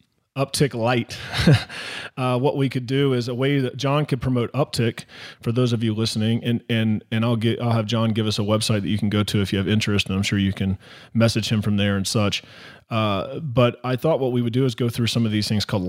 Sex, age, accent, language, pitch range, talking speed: male, 30-49, American, English, 105-125 Hz, 255 wpm